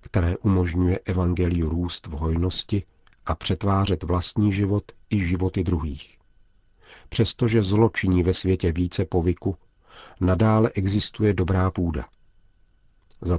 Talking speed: 110 wpm